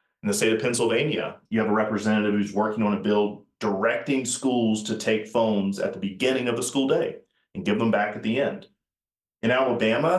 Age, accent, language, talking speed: 30-49, American, English, 205 wpm